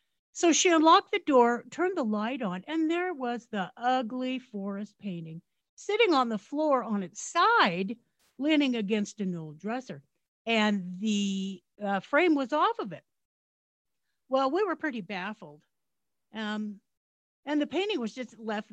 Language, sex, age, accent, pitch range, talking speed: English, female, 50-69, American, 200-305 Hz, 155 wpm